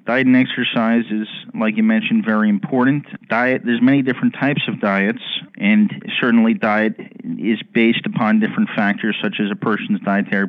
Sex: male